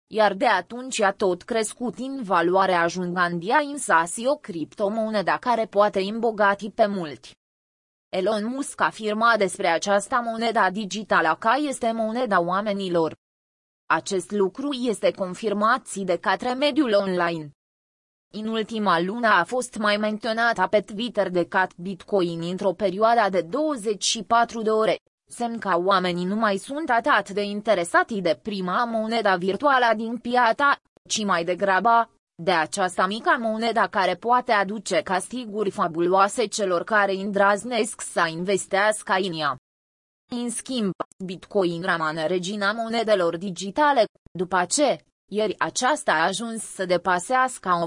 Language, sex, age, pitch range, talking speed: Romanian, female, 20-39, 185-230 Hz, 135 wpm